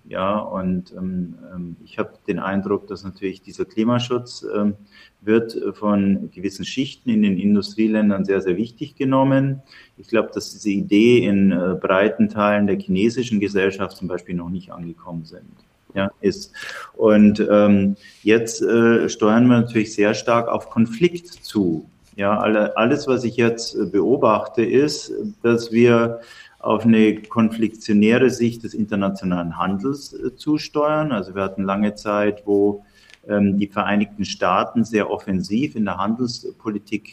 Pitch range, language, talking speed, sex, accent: 100-130 Hz, German, 140 wpm, male, German